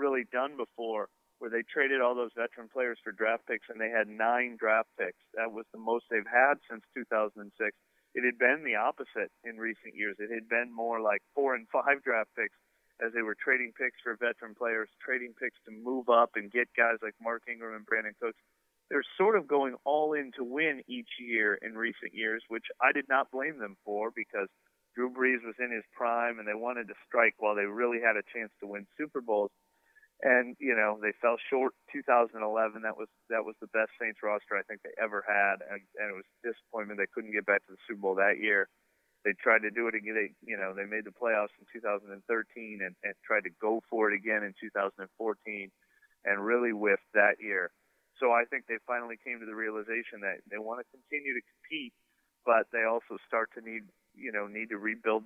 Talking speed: 220 wpm